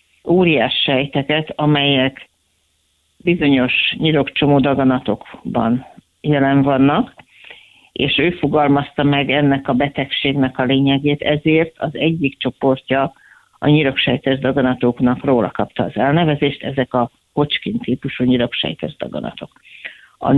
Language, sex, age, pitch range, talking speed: Hungarian, female, 50-69, 130-155 Hz, 95 wpm